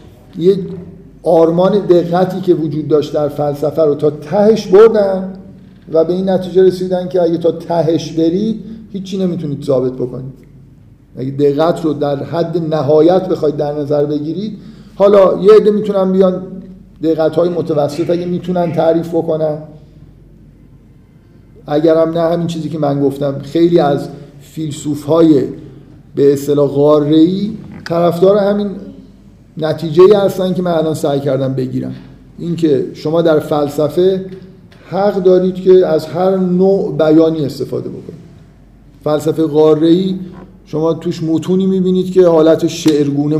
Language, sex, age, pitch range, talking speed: Persian, male, 50-69, 150-185 Hz, 130 wpm